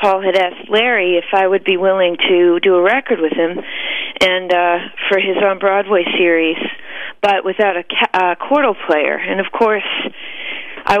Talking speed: 175 wpm